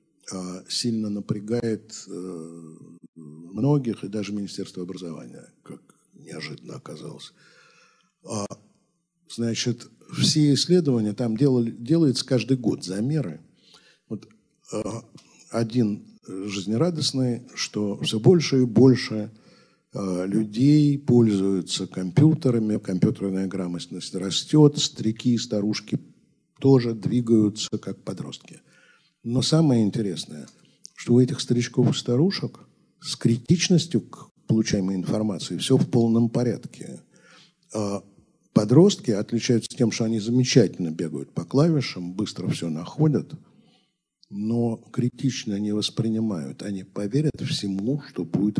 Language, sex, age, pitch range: Russian, male, 60-79, 105-140 Hz